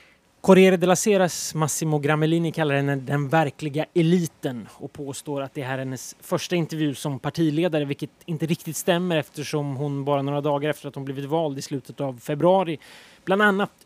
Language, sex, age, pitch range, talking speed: Swedish, male, 20-39, 145-180 Hz, 180 wpm